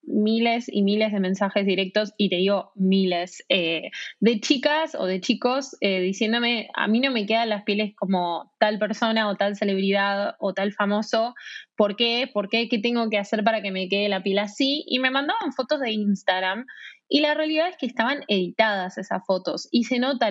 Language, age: Spanish, 20-39